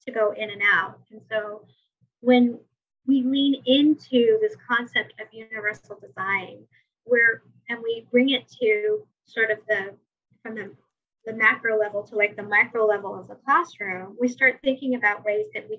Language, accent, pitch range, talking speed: English, American, 210-250 Hz, 170 wpm